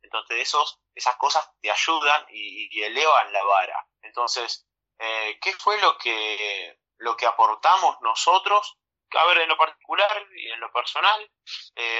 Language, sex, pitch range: Spanish, male, 115-155 Hz